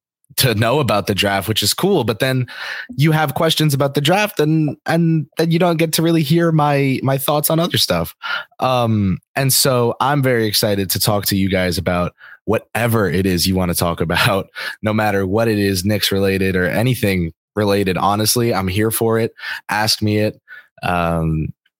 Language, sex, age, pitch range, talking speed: English, male, 20-39, 95-130 Hz, 195 wpm